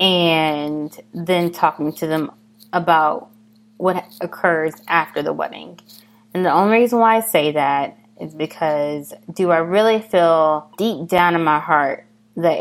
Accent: American